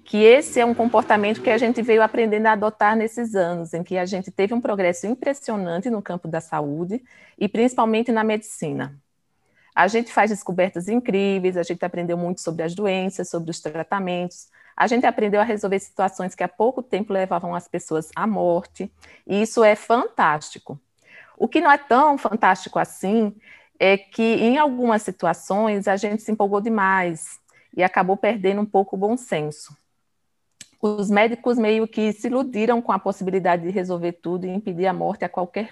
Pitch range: 175-220 Hz